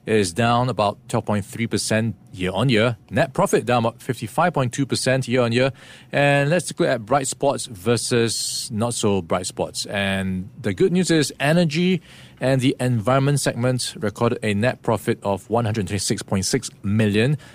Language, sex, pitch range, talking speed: English, male, 105-140 Hz, 145 wpm